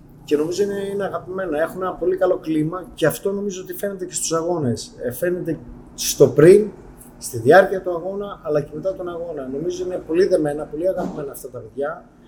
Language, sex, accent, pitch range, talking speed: Greek, male, native, 140-190 Hz, 195 wpm